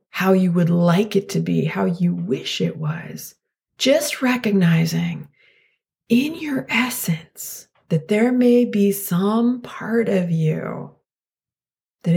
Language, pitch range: English, 165-205 Hz